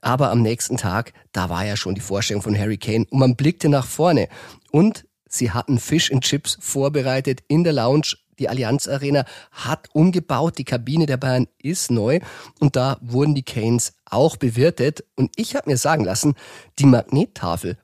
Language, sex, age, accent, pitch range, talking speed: German, male, 40-59, German, 115-145 Hz, 180 wpm